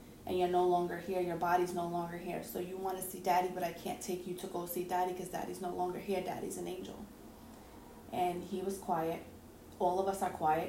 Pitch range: 180-225 Hz